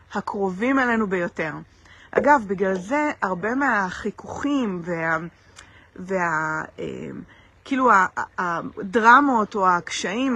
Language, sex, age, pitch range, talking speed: Hebrew, female, 30-49, 195-260 Hz, 80 wpm